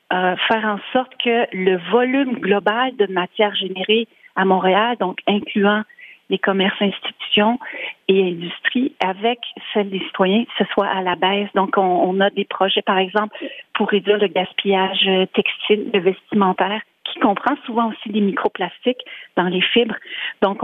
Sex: female